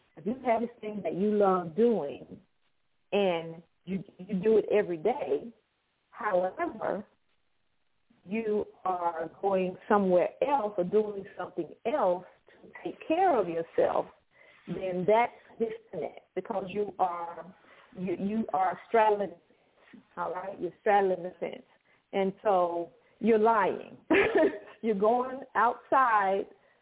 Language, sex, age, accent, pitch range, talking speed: English, female, 40-59, American, 180-225 Hz, 125 wpm